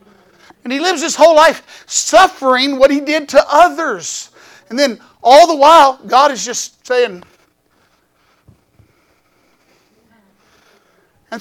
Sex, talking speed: male, 115 wpm